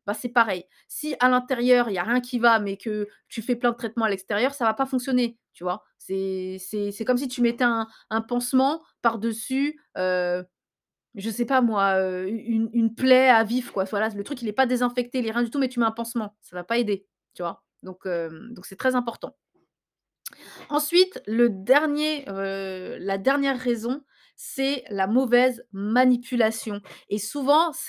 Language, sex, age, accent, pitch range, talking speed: French, female, 20-39, French, 215-260 Hz, 180 wpm